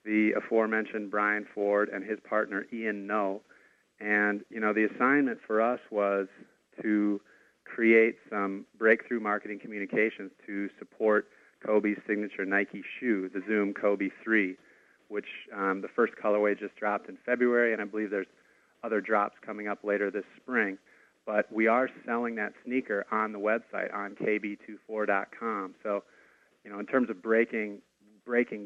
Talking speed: 150 wpm